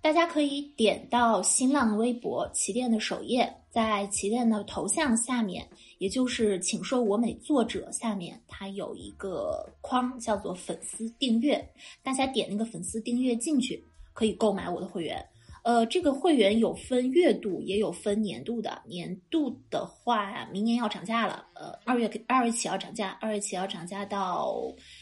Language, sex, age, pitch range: Chinese, female, 20-39, 200-255 Hz